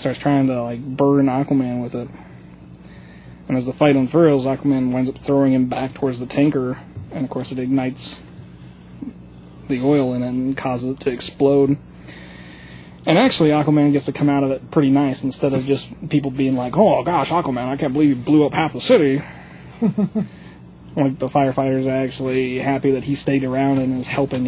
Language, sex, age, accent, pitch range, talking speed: English, male, 20-39, American, 125-145 Hz, 190 wpm